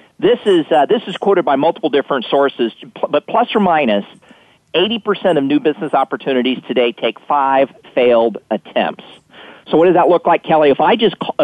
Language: English